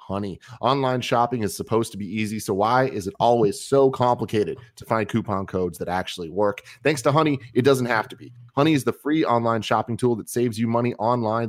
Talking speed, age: 220 wpm, 30-49